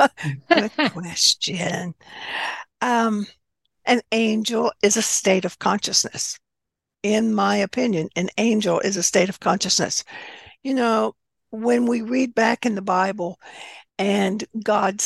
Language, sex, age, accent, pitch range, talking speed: English, female, 60-79, American, 190-240 Hz, 125 wpm